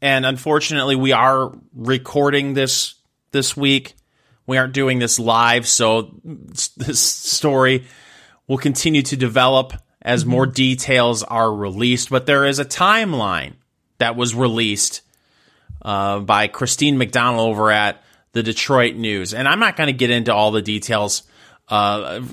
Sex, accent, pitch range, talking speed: male, American, 115-145 Hz, 140 wpm